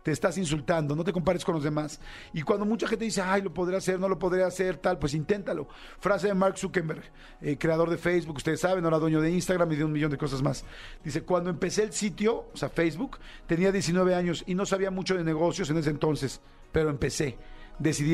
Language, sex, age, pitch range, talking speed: Spanish, male, 50-69, 160-195 Hz, 230 wpm